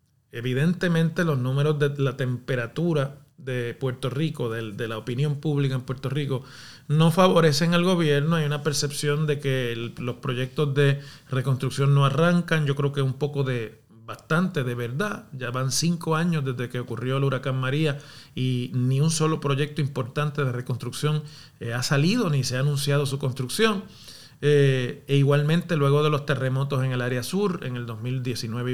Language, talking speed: Spanish, 175 wpm